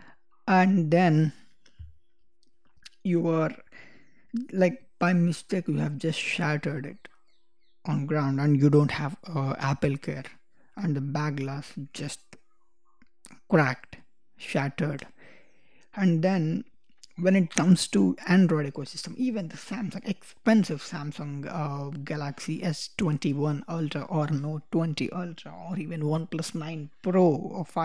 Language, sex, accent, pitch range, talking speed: English, male, Indian, 150-200 Hz, 120 wpm